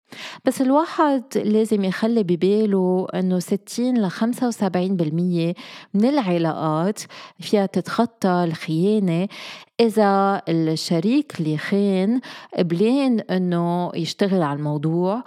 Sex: female